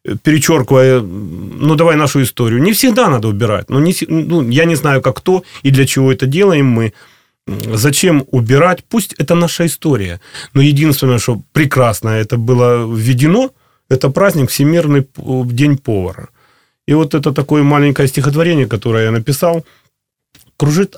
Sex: male